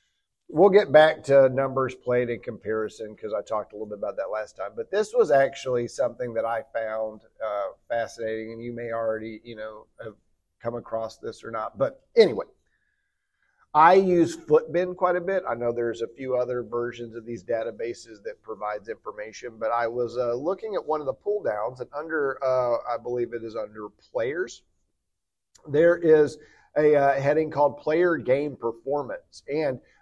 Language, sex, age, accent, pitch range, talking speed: English, male, 40-59, American, 120-170 Hz, 180 wpm